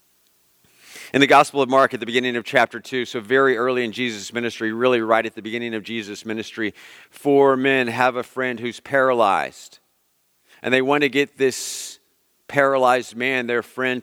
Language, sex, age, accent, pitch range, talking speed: English, male, 40-59, American, 95-125 Hz, 180 wpm